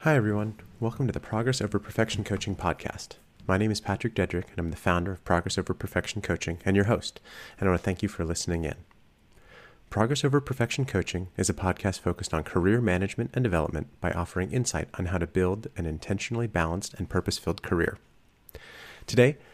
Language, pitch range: English, 90-110 Hz